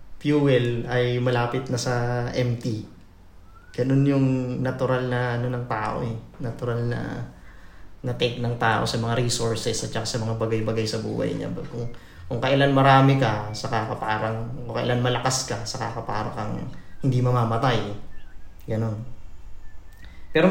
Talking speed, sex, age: 150 wpm, male, 20-39